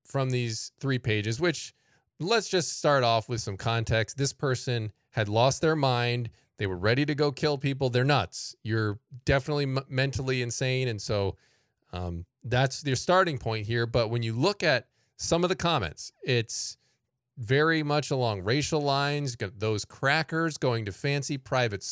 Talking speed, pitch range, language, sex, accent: 170 wpm, 110-145 Hz, English, male, American